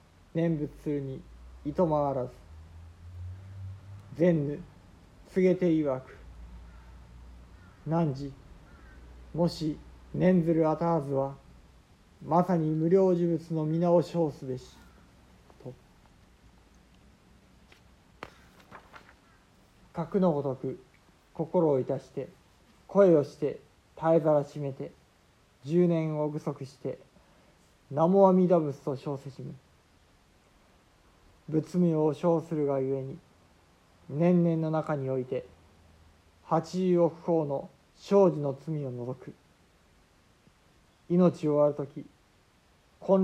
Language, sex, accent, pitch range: Japanese, male, native, 95-165 Hz